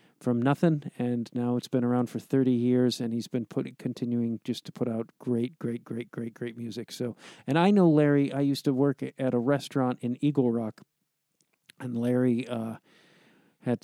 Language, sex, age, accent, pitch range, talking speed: English, male, 50-69, American, 120-145 Hz, 190 wpm